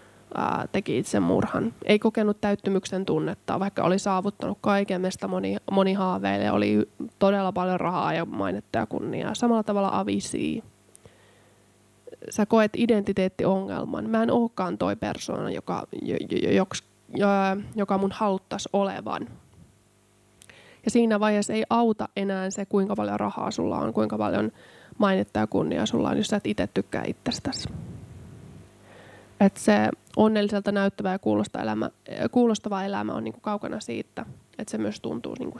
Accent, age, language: native, 20-39, Finnish